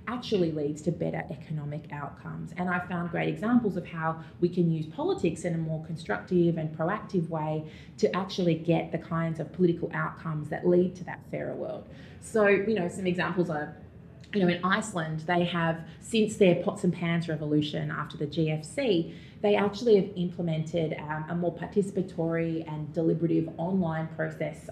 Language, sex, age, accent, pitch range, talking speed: English, female, 30-49, Australian, 160-195 Hz, 170 wpm